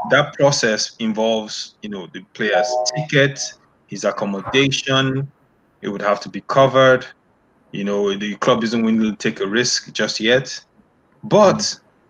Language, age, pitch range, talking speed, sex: English, 20-39, 105-125 Hz, 145 wpm, male